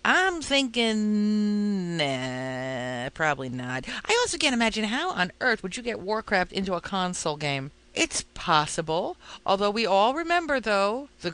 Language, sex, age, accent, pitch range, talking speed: English, female, 50-69, American, 150-220 Hz, 150 wpm